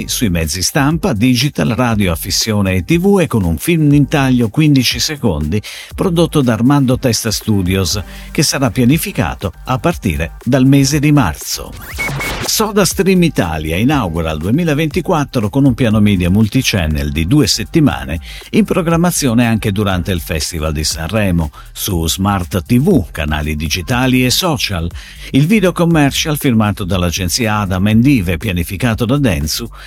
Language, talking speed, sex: Italian, 135 wpm, male